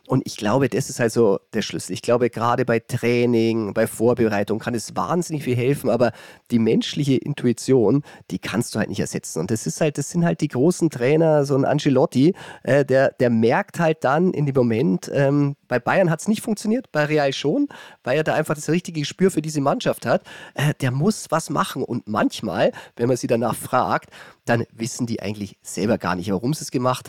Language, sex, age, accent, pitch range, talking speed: German, male, 40-59, German, 120-160 Hz, 215 wpm